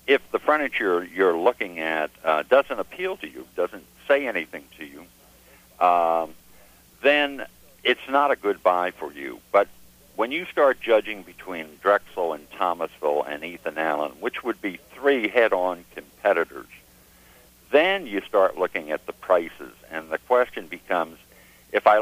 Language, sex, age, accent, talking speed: English, male, 60-79, American, 155 wpm